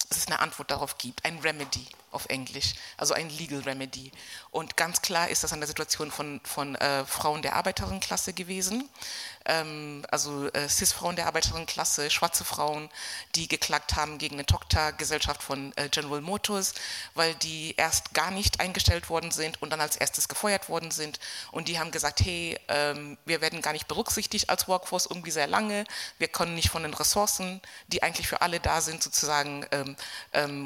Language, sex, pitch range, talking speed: English, female, 145-170 Hz, 180 wpm